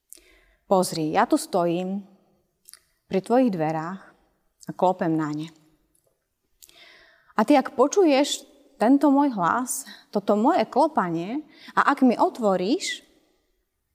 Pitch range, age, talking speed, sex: 175-240 Hz, 30-49, 110 wpm, female